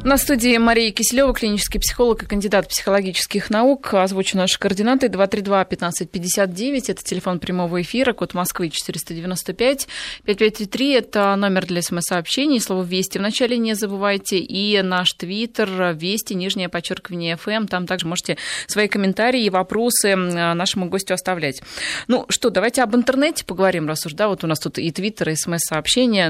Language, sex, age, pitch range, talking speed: Russian, female, 20-39, 180-220 Hz, 150 wpm